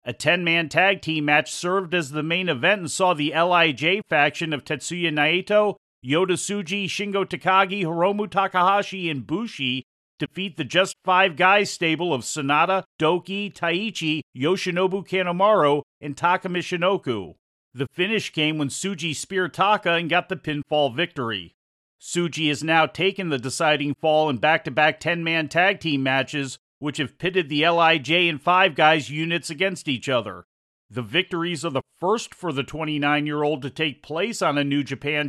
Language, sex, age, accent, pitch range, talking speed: English, male, 40-59, American, 145-180 Hz, 165 wpm